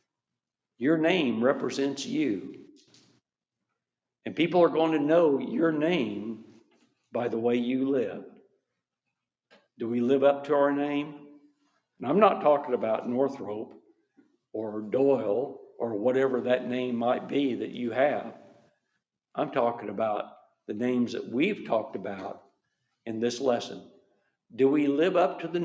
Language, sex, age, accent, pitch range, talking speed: English, male, 60-79, American, 120-145 Hz, 140 wpm